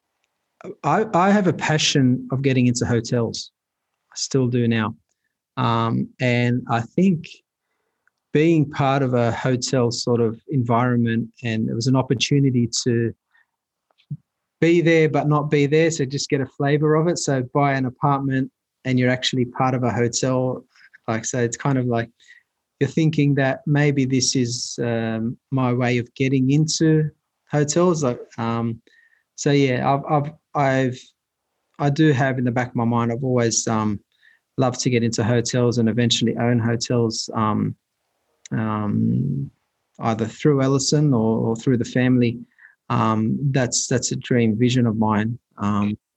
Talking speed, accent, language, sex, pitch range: 160 wpm, Australian, English, male, 115-140 Hz